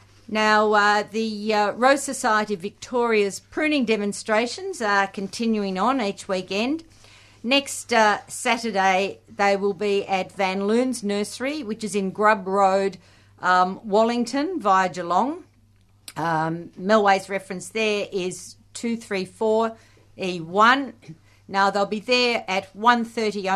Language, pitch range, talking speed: English, 185-225 Hz, 115 wpm